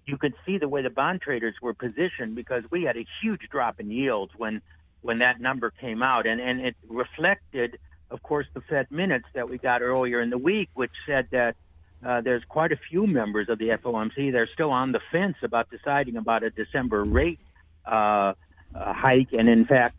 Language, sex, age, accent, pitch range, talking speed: English, male, 60-79, American, 110-140 Hz, 205 wpm